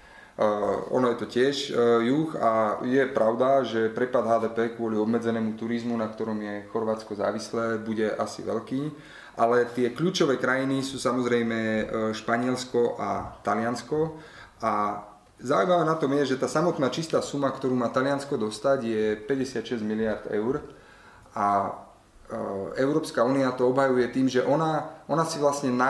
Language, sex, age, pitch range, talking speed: Slovak, male, 30-49, 110-135 Hz, 145 wpm